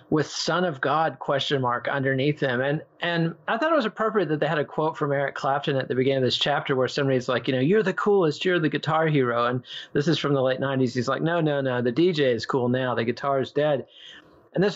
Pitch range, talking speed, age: 130-160 Hz, 260 wpm, 40-59